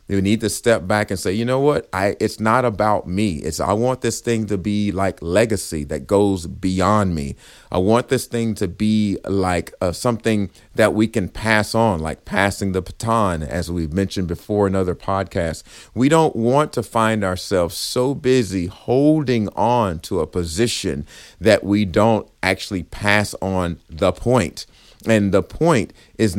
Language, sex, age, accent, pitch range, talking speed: English, male, 40-59, American, 95-115 Hz, 175 wpm